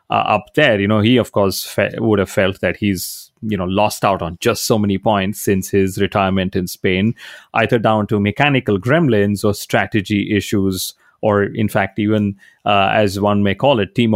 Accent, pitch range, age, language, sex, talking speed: Indian, 100-115 Hz, 30-49, English, male, 195 wpm